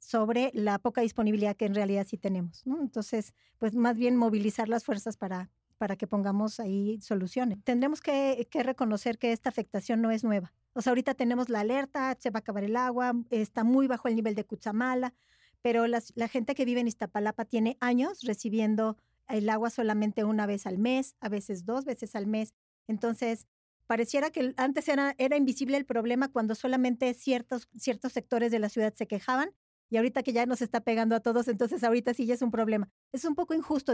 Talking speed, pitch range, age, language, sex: 205 wpm, 215-250 Hz, 40-59, Spanish, female